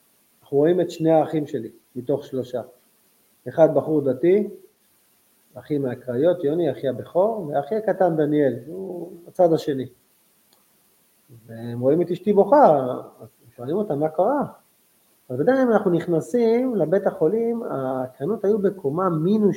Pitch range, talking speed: 130-200 Hz, 125 wpm